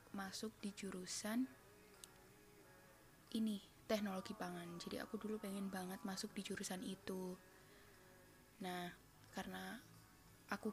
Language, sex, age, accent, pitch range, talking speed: Indonesian, female, 20-39, native, 190-220 Hz, 100 wpm